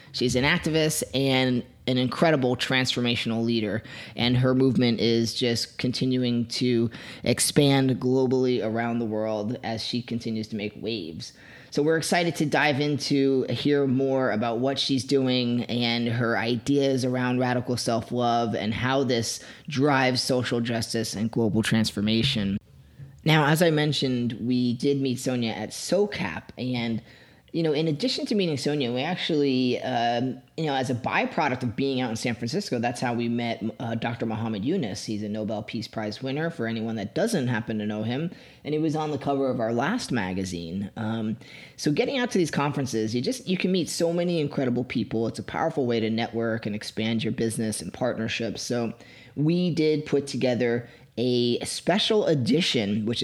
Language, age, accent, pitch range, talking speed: English, 20-39, American, 115-140 Hz, 175 wpm